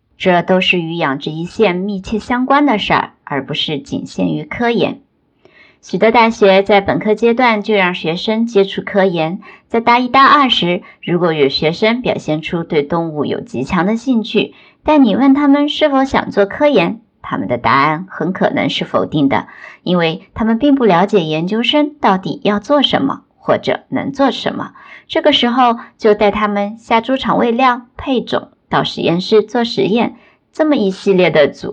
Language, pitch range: Chinese, 165-250 Hz